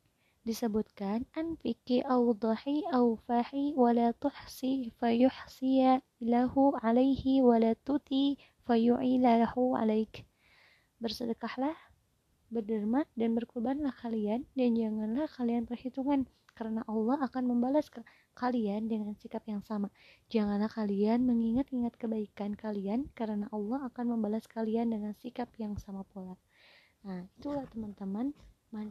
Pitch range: 215-255 Hz